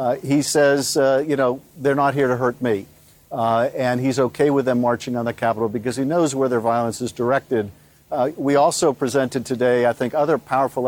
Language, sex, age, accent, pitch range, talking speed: English, male, 50-69, American, 130-155 Hz, 215 wpm